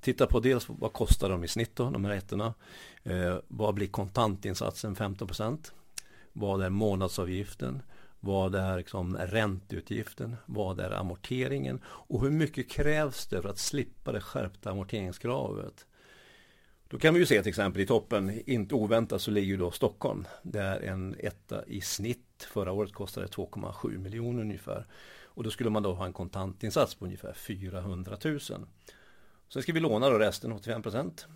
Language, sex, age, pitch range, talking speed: Swedish, male, 50-69, 95-120 Hz, 165 wpm